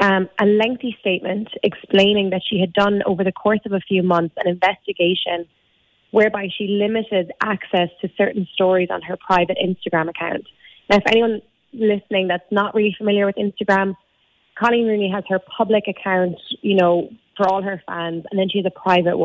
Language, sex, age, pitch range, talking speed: English, female, 20-39, 180-210 Hz, 180 wpm